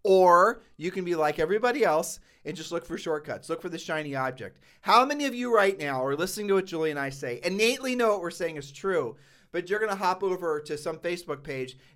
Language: English